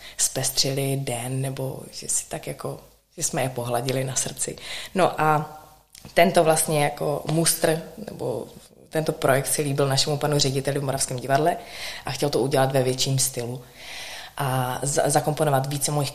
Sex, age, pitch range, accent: female, 20-39, 135-155 Hz, native